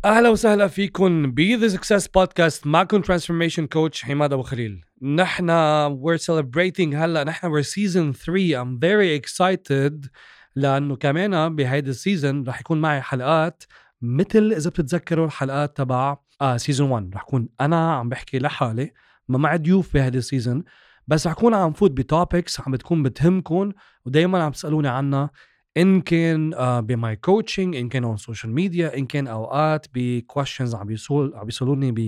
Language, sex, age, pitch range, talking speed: Arabic, male, 30-49, 135-175 Hz, 155 wpm